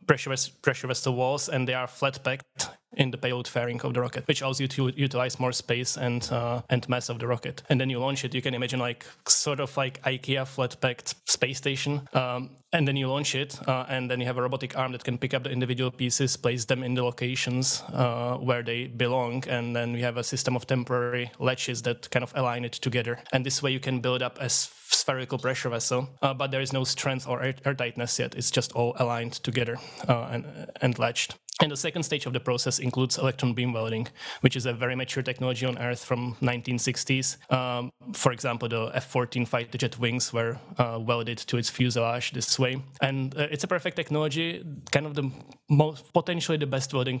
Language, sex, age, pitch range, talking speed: English, male, 20-39, 125-135 Hz, 220 wpm